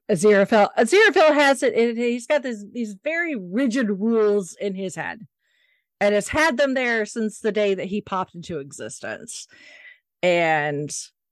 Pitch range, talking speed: 180-240 Hz, 150 wpm